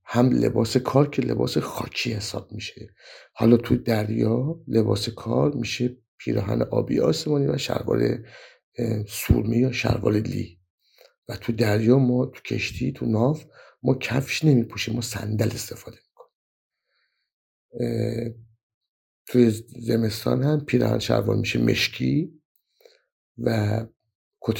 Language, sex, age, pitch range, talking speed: Persian, male, 50-69, 110-130 Hz, 115 wpm